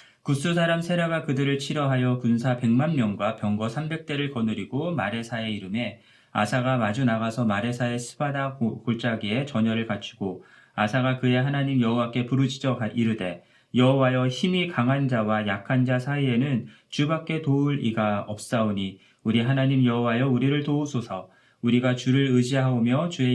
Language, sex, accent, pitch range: Korean, male, native, 115-135 Hz